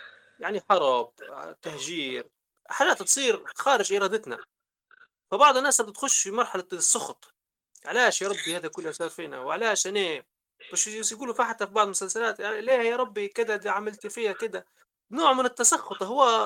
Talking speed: 140 wpm